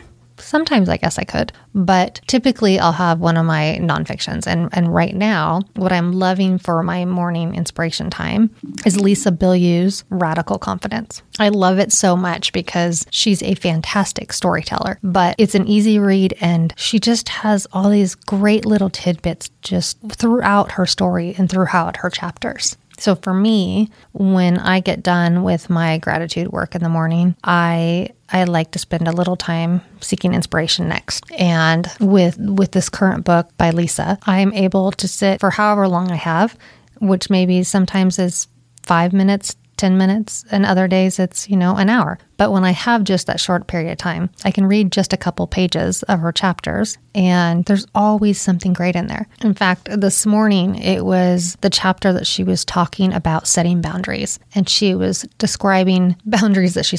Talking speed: 180 wpm